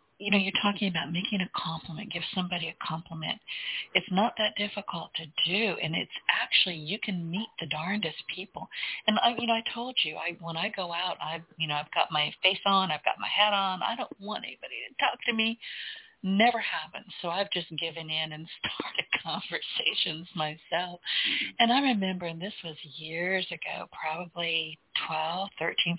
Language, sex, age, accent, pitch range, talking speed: English, female, 50-69, American, 165-200 Hz, 190 wpm